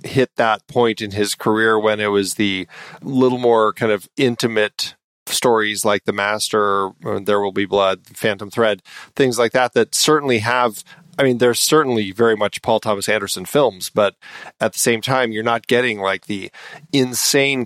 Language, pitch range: English, 105-130 Hz